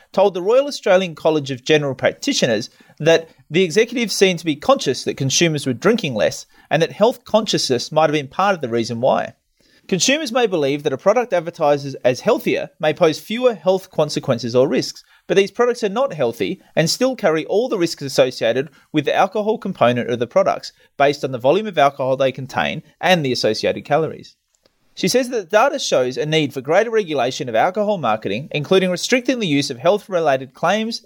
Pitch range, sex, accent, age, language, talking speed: 140-210 Hz, male, Australian, 30-49, English, 195 wpm